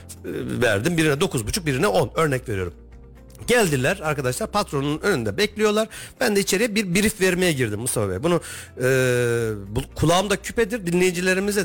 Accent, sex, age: native, male, 50-69